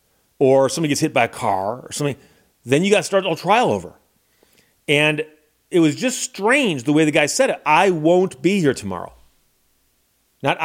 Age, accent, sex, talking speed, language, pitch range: 40-59, American, male, 190 wpm, English, 150-195 Hz